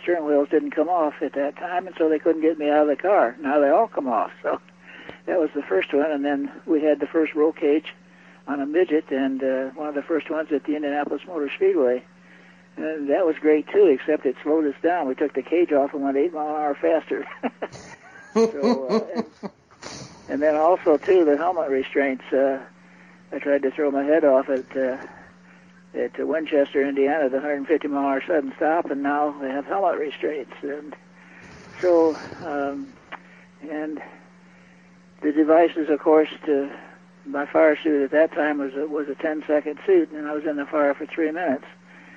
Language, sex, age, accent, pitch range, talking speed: English, male, 60-79, American, 140-160 Hz, 190 wpm